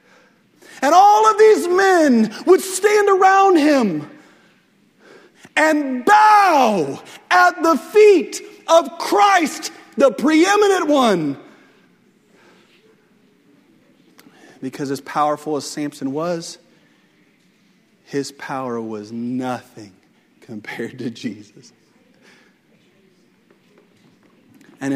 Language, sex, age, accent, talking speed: English, male, 40-59, American, 80 wpm